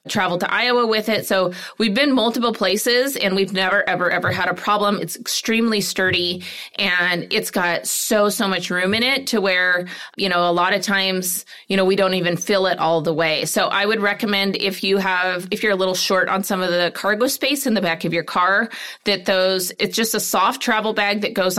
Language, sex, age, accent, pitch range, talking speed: English, female, 30-49, American, 180-215 Hz, 230 wpm